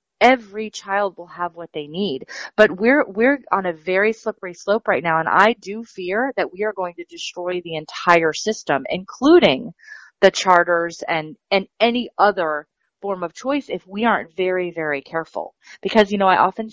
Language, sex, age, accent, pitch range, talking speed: English, female, 30-49, American, 170-215 Hz, 185 wpm